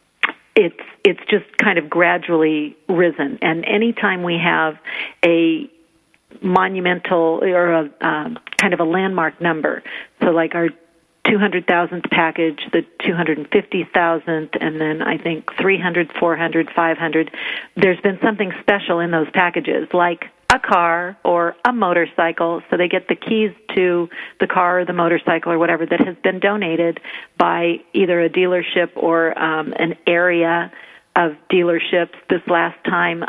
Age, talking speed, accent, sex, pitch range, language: 50-69, 140 wpm, American, female, 165-180 Hz, English